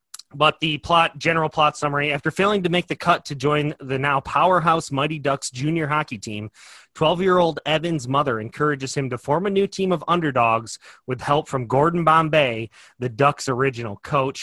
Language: English